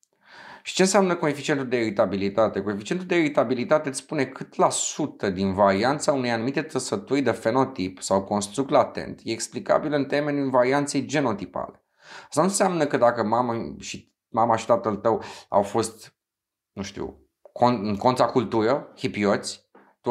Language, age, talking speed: Romanian, 30-49, 150 wpm